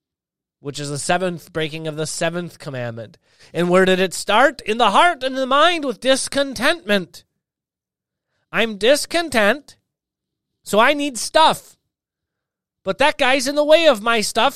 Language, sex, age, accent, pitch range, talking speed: English, male, 30-49, American, 160-250 Hz, 155 wpm